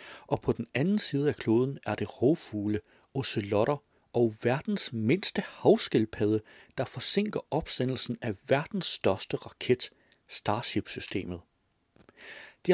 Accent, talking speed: native, 115 wpm